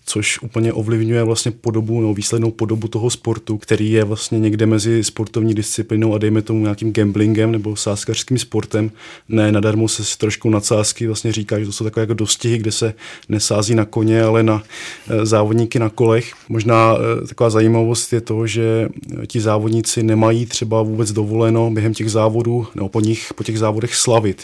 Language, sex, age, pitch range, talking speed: Czech, male, 20-39, 105-115 Hz, 175 wpm